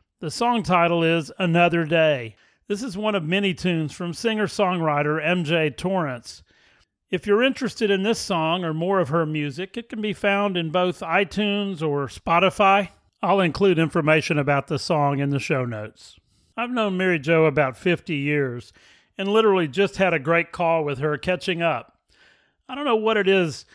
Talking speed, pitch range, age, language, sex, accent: 175 wpm, 150-200 Hz, 40-59, English, male, American